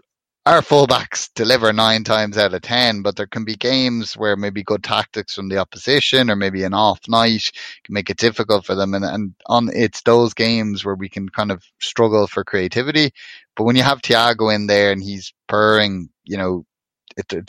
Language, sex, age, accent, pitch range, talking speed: English, male, 20-39, Irish, 100-115 Hz, 200 wpm